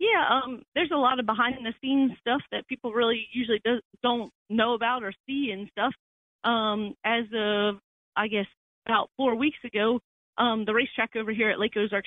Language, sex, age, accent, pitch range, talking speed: English, female, 40-59, American, 220-260 Hz, 180 wpm